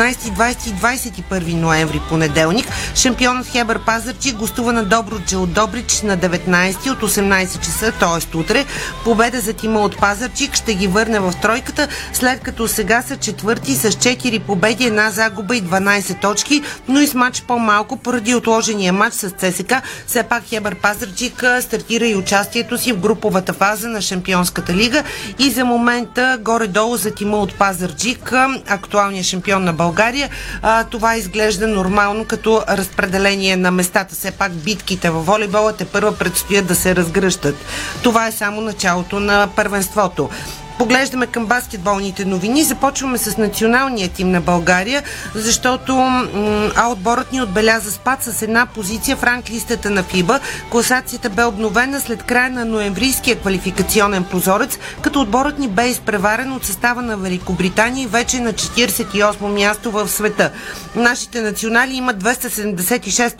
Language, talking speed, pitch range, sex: Bulgarian, 145 wpm, 195-240 Hz, female